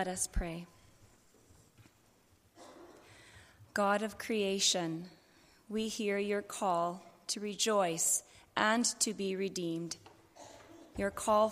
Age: 30-49